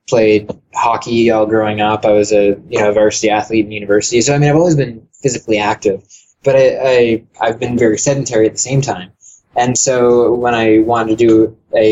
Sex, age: male, 20-39